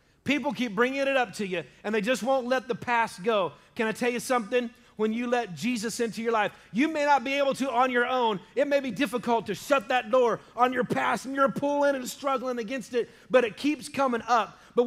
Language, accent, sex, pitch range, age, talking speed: English, American, male, 210-270 Hz, 30-49, 240 wpm